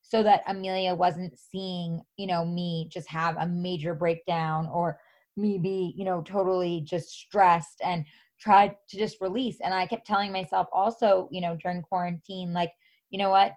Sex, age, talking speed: female, 20-39, 175 wpm